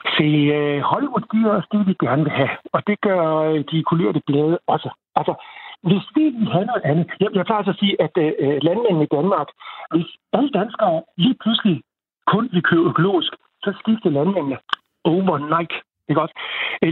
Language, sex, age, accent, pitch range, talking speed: Danish, male, 60-79, native, 155-205 Hz, 175 wpm